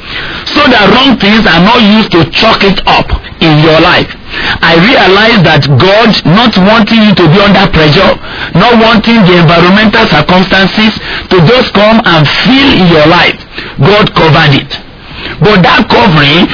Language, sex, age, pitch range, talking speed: English, male, 50-69, 165-225 Hz, 160 wpm